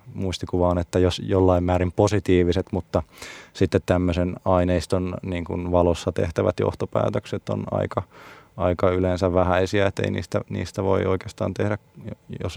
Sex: male